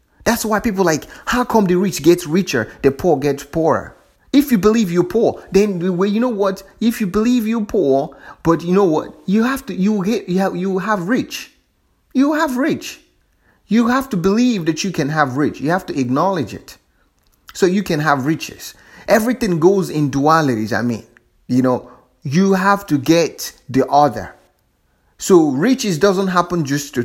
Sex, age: male, 30-49